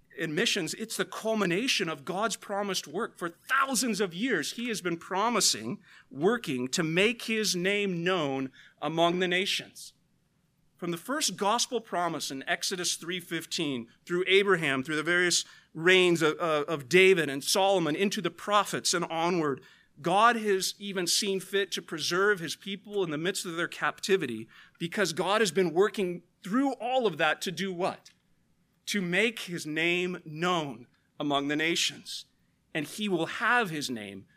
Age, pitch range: 40-59, 155-195 Hz